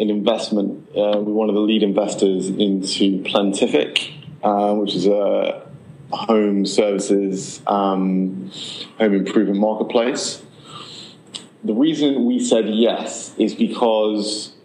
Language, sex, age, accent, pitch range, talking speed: English, male, 20-39, British, 95-105 Hz, 115 wpm